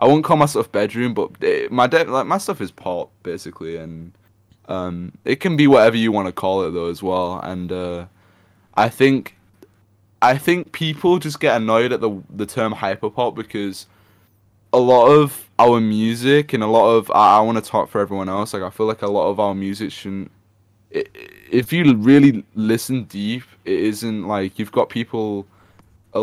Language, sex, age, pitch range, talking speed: English, male, 10-29, 100-115 Hz, 195 wpm